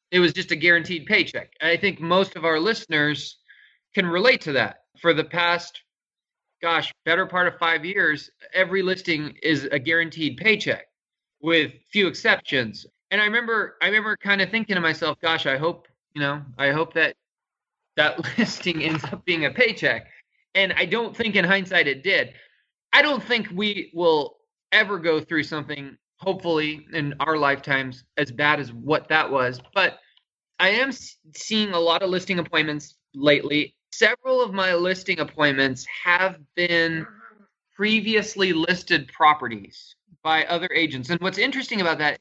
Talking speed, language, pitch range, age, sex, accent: 160 wpm, English, 150-195 Hz, 20-39, male, American